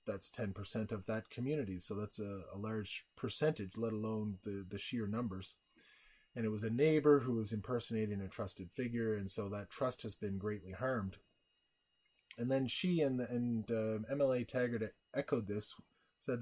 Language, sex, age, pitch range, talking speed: English, male, 30-49, 105-125 Hz, 170 wpm